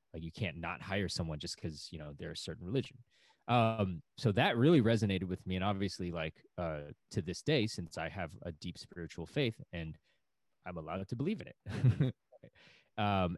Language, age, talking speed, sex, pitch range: English, 20-39, 195 wpm, male, 90-130 Hz